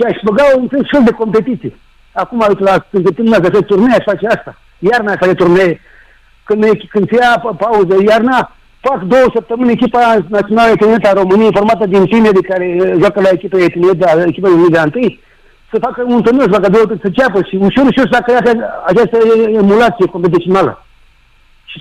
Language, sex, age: Romanian, male, 60-79